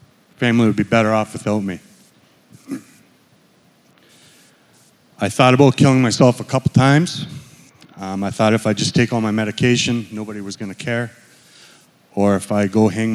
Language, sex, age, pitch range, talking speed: English, male, 30-49, 110-130 Hz, 160 wpm